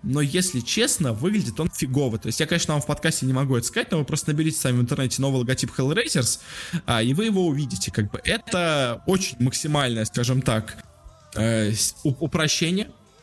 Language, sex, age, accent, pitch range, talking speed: Russian, male, 20-39, native, 125-165 Hz, 175 wpm